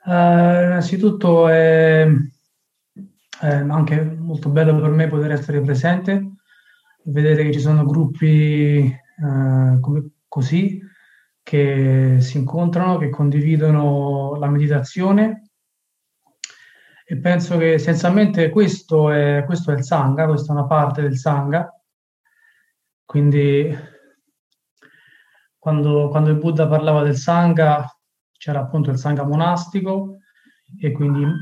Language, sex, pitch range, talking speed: Italian, male, 145-175 Hz, 110 wpm